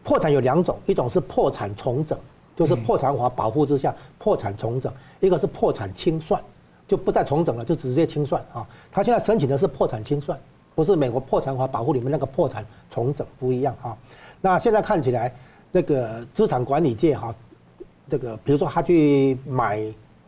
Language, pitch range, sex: Chinese, 120-155 Hz, male